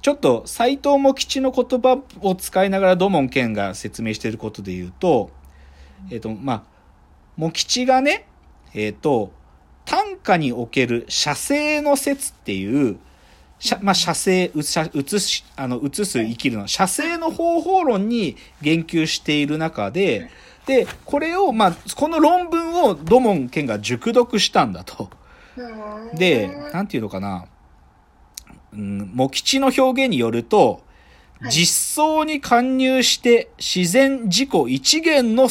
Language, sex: Japanese, male